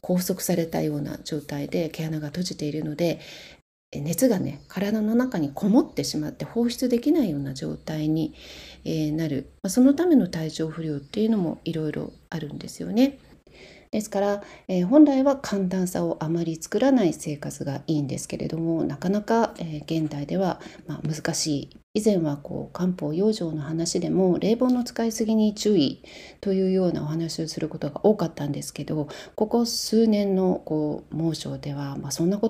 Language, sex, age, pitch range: Japanese, female, 40-59, 155-210 Hz